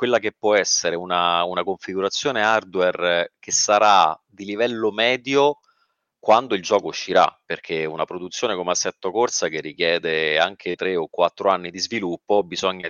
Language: Italian